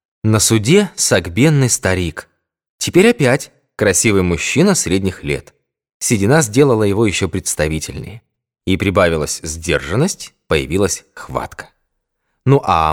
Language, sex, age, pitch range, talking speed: Russian, male, 20-39, 95-145 Hz, 105 wpm